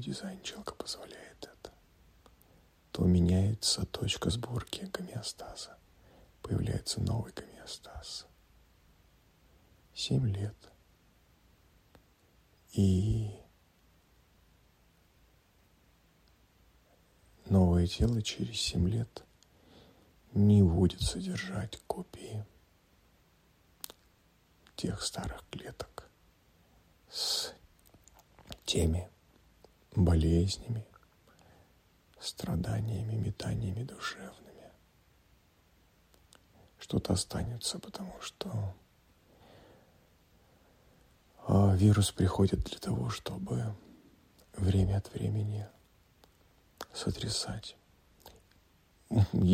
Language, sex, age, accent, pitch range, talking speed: Russian, male, 50-69, native, 85-105 Hz, 55 wpm